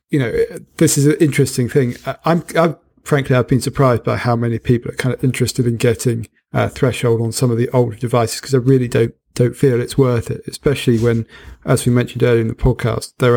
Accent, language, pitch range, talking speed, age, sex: British, English, 115-135 Hz, 225 wpm, 40-59, male